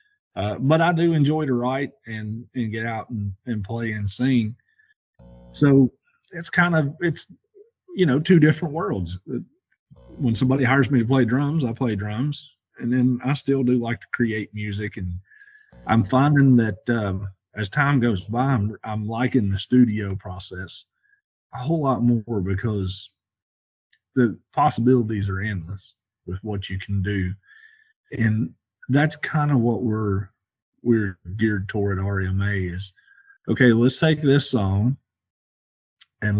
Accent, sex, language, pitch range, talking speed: American, male, English, 100-130 Hz, 150 wpm